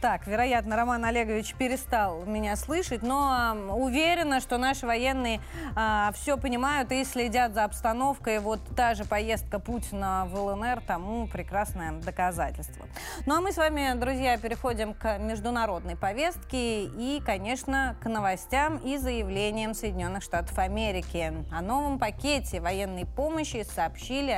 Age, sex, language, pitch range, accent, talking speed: 20-39, female, Russian, 210-260 Hz, native, 135 wpm